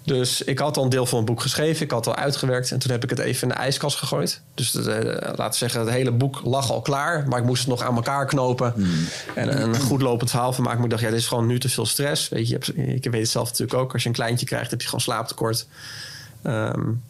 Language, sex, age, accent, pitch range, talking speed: Dutch, male, 20-39, Dutch, 120-140 Hz, 290 wpm